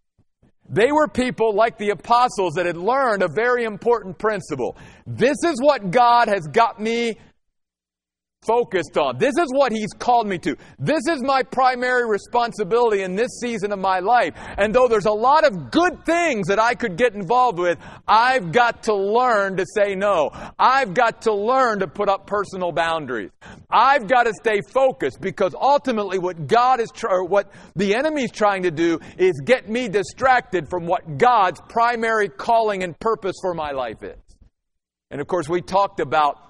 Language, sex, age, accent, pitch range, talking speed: English, male, 50-69, American, 140-235 Hz, 180 wpm